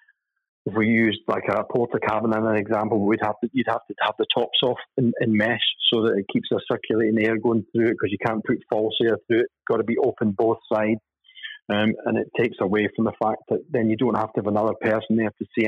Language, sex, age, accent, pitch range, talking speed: English, male, 30-49, British, 105-115 Hz, 255 wpm